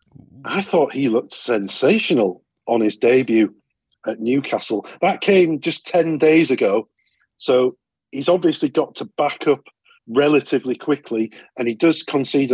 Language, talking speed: English, 140 wpm